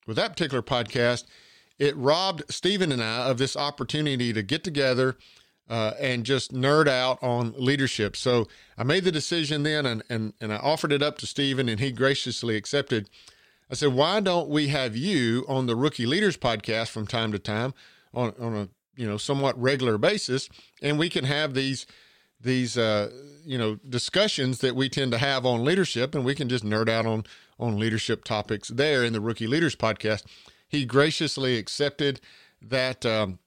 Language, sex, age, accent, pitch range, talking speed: English, male, 50-69, American, 110-140 Hz, 185 wpm